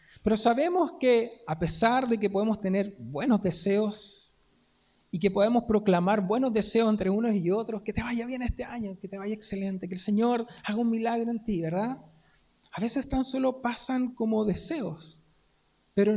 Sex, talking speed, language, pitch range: male, 180 wpm, Spanish, 170-230 Hz